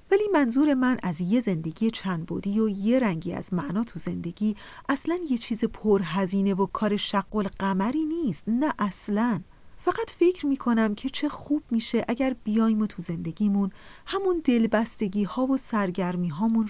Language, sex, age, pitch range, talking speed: Persian, female, 40-59, 195-255 Hz, 160 wpm